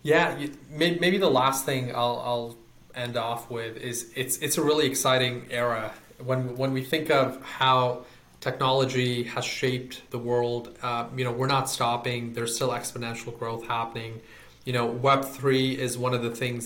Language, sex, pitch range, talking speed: English, male, 120-130 Hz, 170 wpm